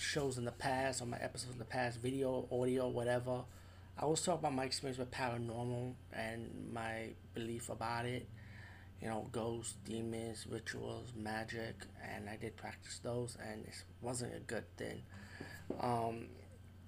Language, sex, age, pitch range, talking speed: English, male, 20-39, 95-125 Hz, 155 wpm